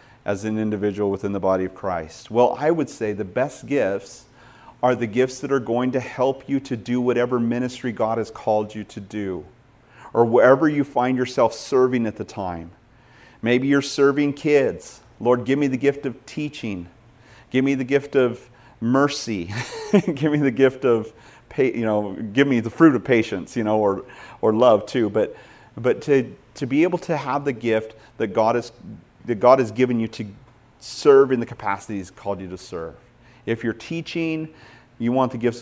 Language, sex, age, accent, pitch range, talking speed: English, male, 40-59, American, 110-130 Hz, 195 wpm